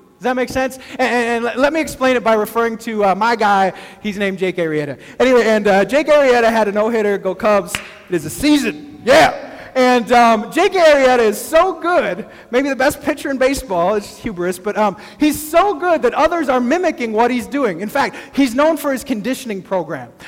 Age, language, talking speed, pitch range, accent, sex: 20-39, English, 215 wpm, 215-280 Hz, American, male